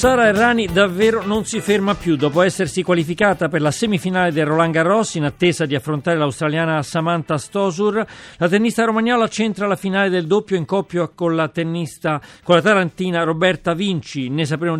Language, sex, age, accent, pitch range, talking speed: Italian, male, 40-59, native, 150-185 Hz, 175 wpm